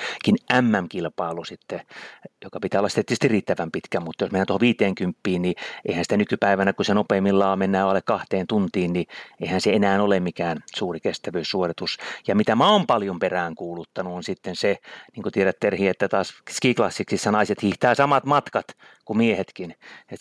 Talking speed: 170 wpm